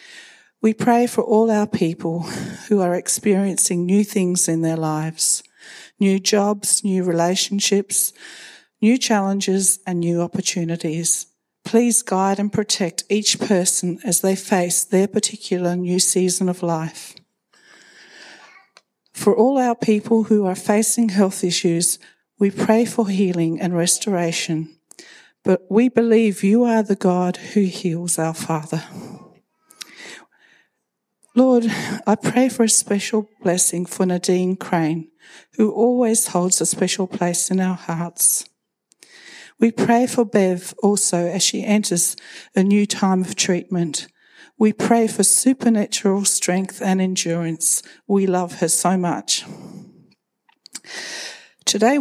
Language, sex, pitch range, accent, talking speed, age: English, female, 180-220 Hz, Australian, 125 wpm, 50-69